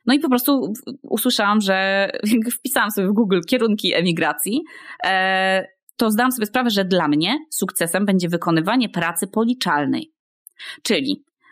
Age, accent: 20-39, native